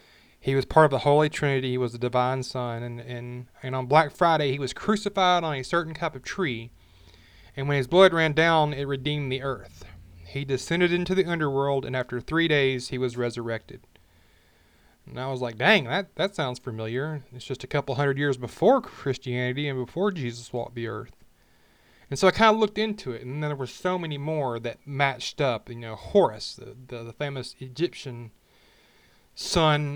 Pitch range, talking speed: 125-155 Hz, 195 wpm